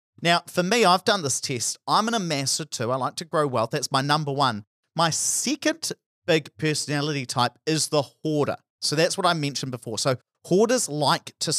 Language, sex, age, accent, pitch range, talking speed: English, male, 40-59, Australian, 125-165 Hz, 195 wpm